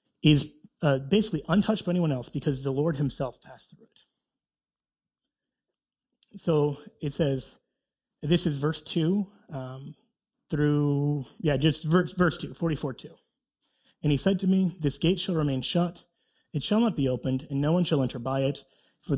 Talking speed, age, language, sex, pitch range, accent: 160 wpm, 30-49, English, male, 135-180 Hz, American